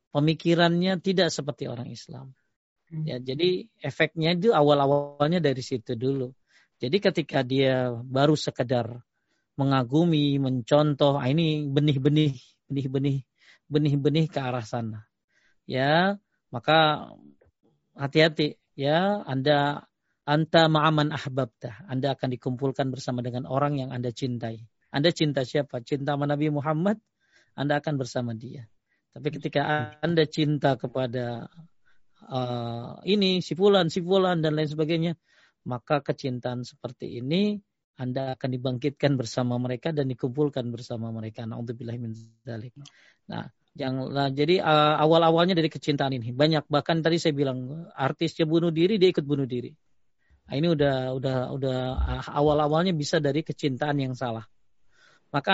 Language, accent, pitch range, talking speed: Indonesian, native, 130-160 Hz, 130 wpm